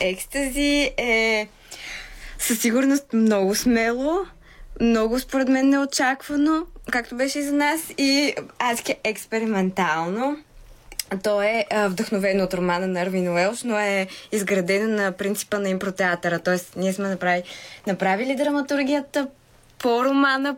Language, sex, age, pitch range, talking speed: Bulgarian, female, 20-39, 190-245 Hz, 120 wpm